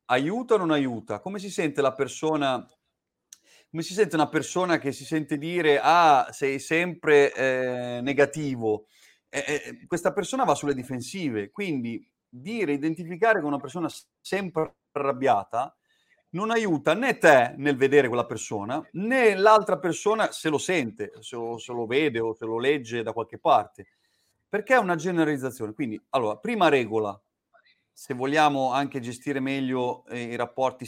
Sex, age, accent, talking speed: male, 30-49, native, 155 wpm